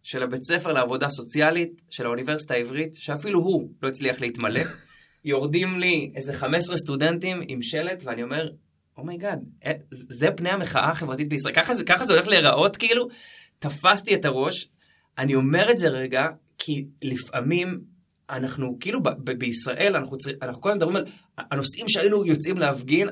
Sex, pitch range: male, 130-180 Hz